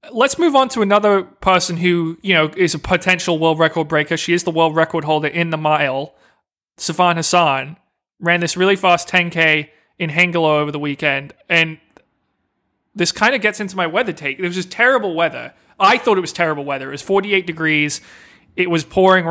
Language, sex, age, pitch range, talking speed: English, male, 20-39, 160-200 Hz, 195 wpm